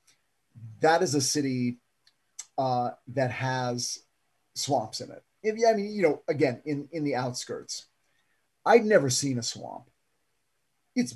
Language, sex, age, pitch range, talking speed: English, male, 40-59, 130-185 Hz, 135 wpm